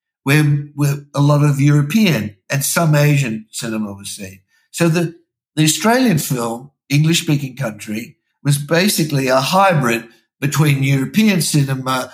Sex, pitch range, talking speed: male, 120-160 Hz, 125 wpm